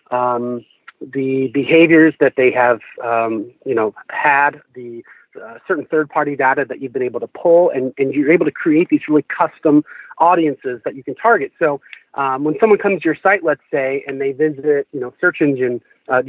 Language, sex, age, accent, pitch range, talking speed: English, male, 40-59, American, 135-185 Hz, 200 wpm